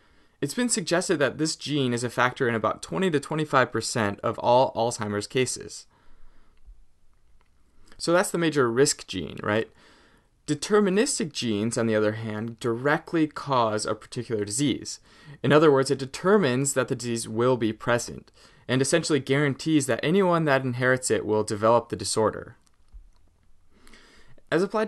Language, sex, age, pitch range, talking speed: English, male, 20-39, 115-155 Hz, 145 wpm